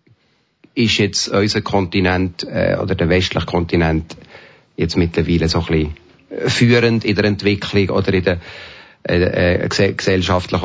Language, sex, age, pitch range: German, male, 40-59, 90-110 Hz